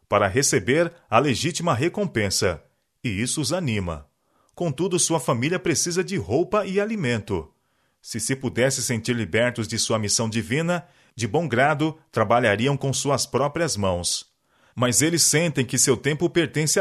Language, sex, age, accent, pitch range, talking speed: Portuguese, male, 40-59, Brazilian, 115-165 Hz, 145 wpm